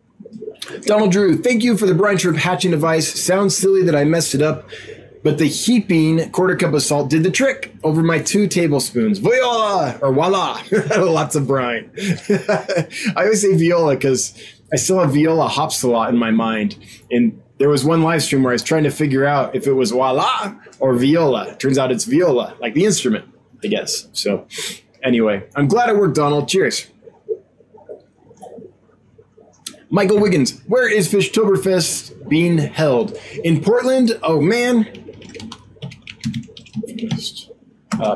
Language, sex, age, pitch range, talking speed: English, male, 20-39, 145-210 Hz, 155 wpm